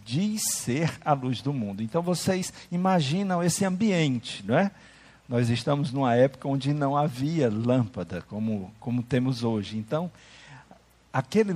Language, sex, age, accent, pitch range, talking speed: Portuguese, male, 50-69, Brazilian, 115-160 Hz, 140 wpm